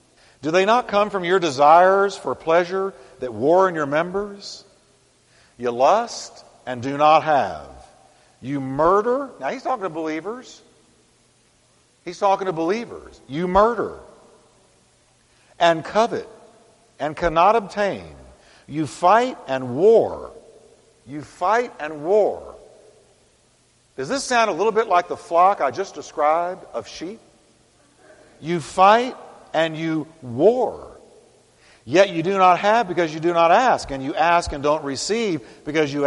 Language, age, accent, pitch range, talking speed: English, 50-69, American, 150-200 Hz, 140 wpm